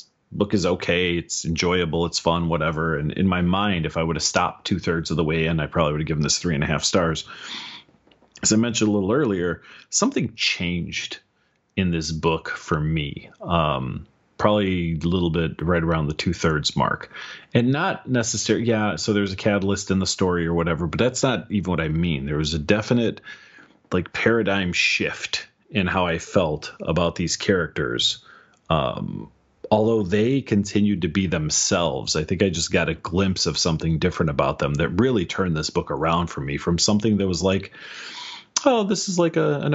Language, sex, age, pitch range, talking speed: English, male, 30-49, 85-110 Hz, 190 wpm